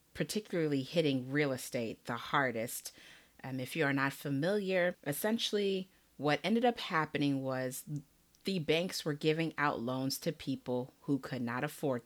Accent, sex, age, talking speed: American, female, 30-49, 150 wpm